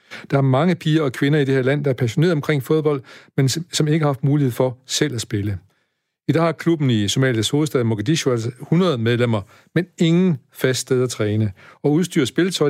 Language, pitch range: Danish, 120-150 Hz